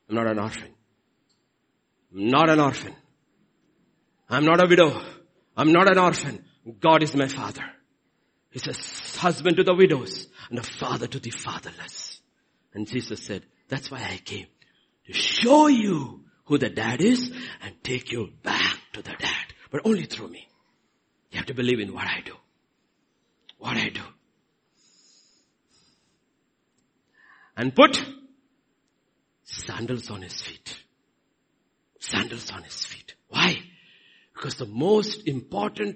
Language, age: English, 50-69